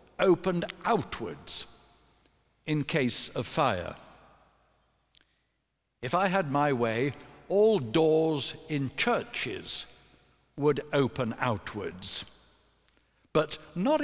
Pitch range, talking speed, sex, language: 135-180 Hz, 85 wpm, male, English